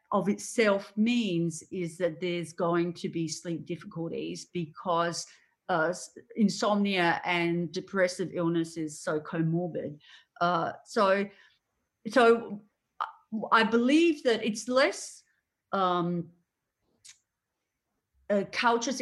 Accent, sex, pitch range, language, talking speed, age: Australian, female, 170-220 Hz, English, 100 wpm, 40-59